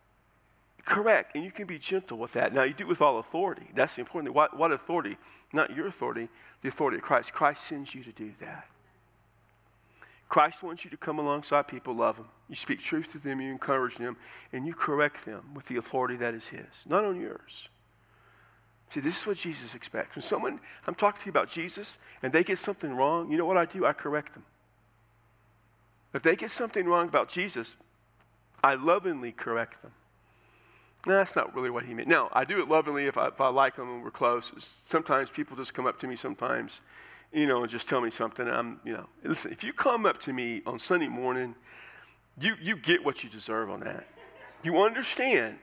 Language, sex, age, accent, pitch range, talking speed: English, male, 50-69, American, 120-190 Hz, 215 wpm